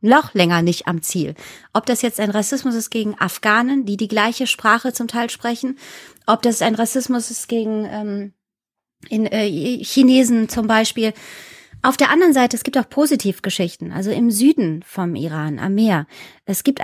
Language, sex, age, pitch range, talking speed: German, female, 30-49, 205-250 Hz, 170 wpm